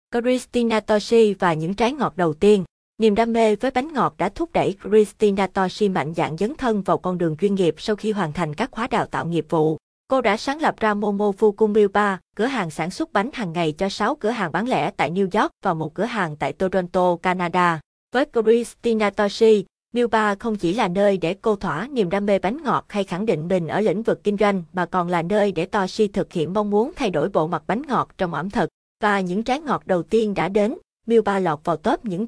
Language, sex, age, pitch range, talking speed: Vietnamese, female, 20-39, 180-225 Hz, 230 wpm